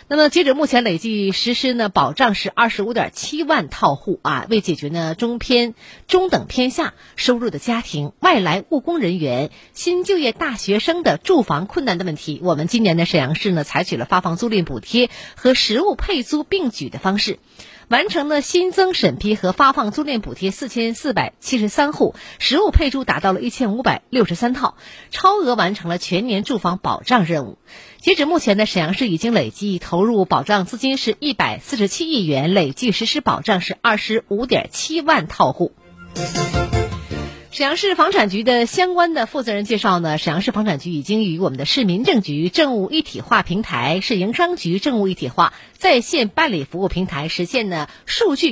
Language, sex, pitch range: Chinese, female, 180-285 Hz